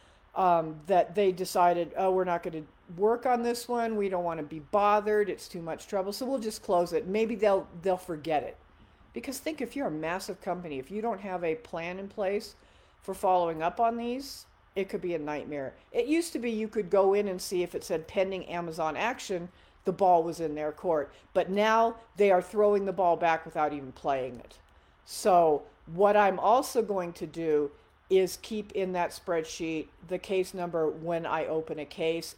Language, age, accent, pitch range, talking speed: English, 50-69, American, 165-210 Hz, 205 wpm